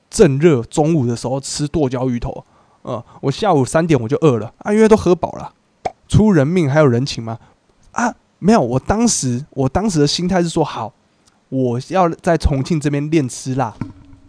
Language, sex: Chinese, male